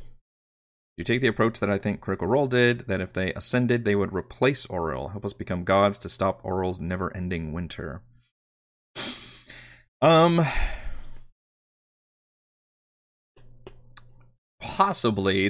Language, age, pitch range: English, 30-49, 95-120 Hz